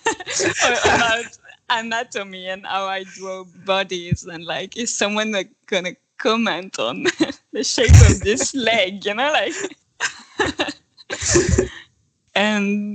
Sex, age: female, 20-39